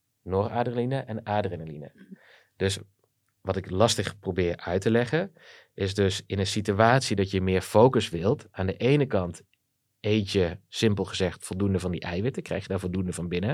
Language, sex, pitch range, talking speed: Dutch, male, 95-115 Hz, 175 wpm